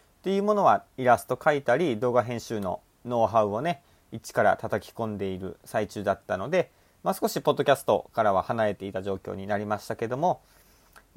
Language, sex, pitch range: Japanese, male, 105-145 Hz